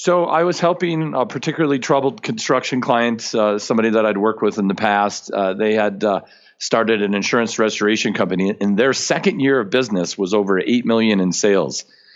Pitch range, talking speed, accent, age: 95-120 Hz, 190 wpm, American, 40-59